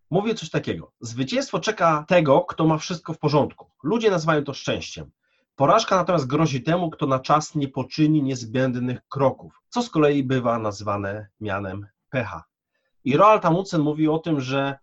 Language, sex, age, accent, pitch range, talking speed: Polish, male, 30-49, native, 130-165 Hz, 160 wpm